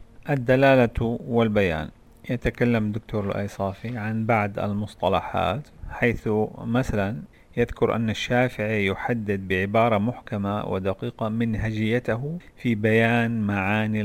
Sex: male